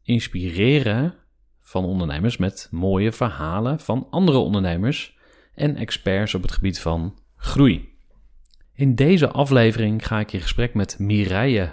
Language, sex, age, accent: Dutch, male, 40-59, Dutch